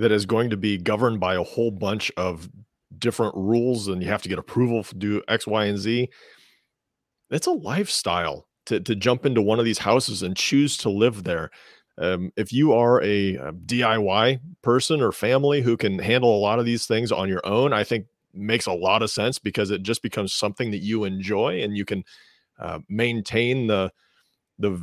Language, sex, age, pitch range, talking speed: English, male, 40-59, 100-125 Hz, 205 wpm